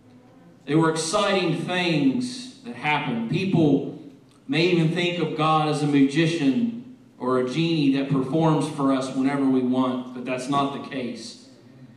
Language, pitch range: English, 135-170 Hz